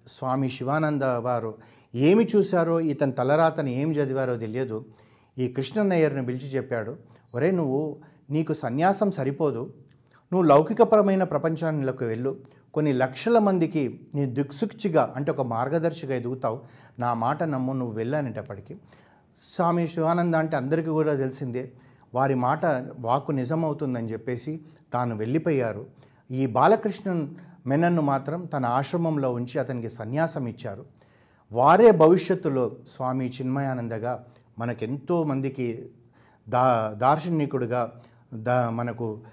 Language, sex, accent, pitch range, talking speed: Telugu, male, native, 120-160 Hz, 105 wpm